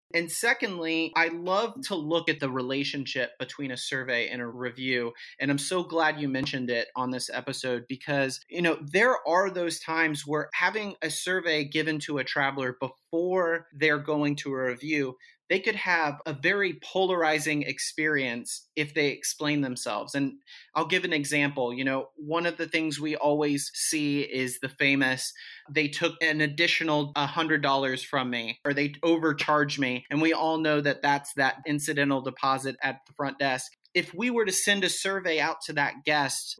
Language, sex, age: English, male, 30-49